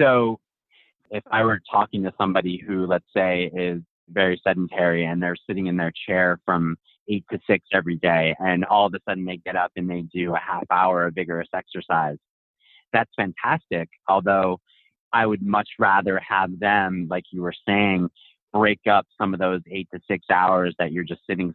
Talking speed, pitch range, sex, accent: 190 wpm, 85-95 Hz, male, American